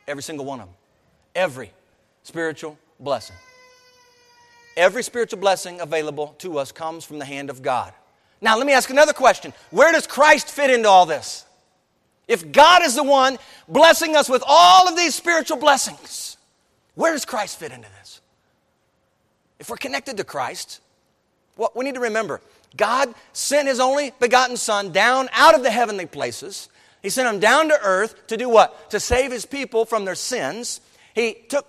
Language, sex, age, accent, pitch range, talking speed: English, male, 40-59, American, 185-275 Hz, 175 wpm